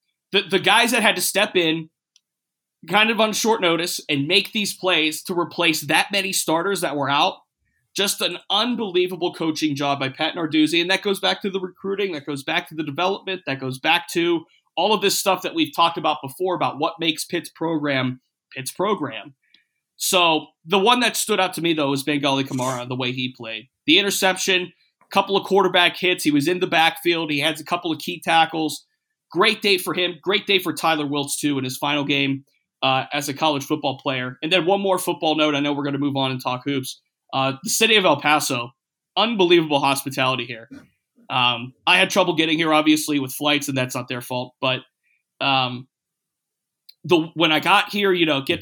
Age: 30-49